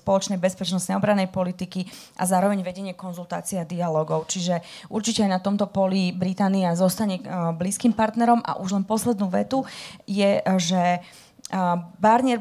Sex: female